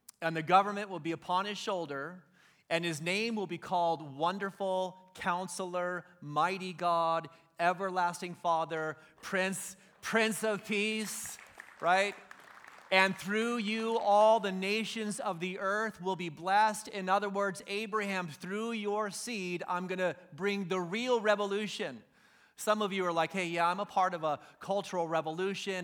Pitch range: 170-205 Hz